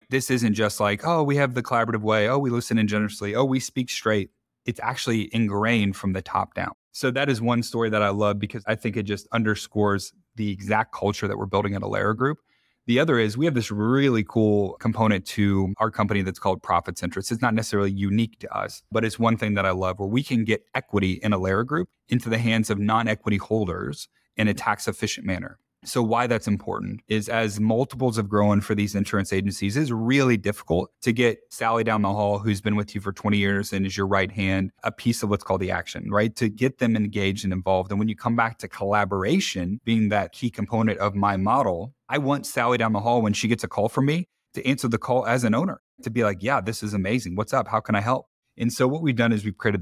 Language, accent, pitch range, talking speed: English, American, 100-115 Hz, 240 wpm